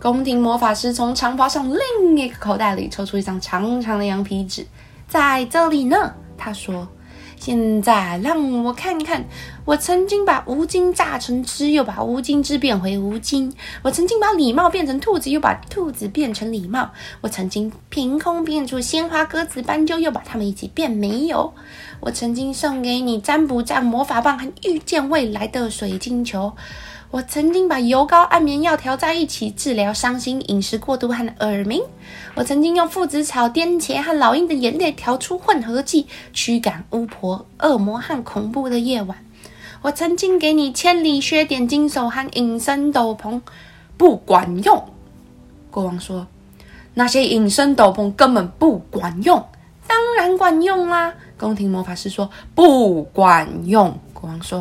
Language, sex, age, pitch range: Chinese, female, 20-39, 215-315 Hz